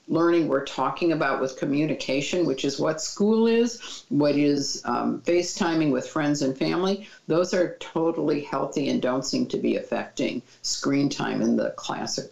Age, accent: 50-69, American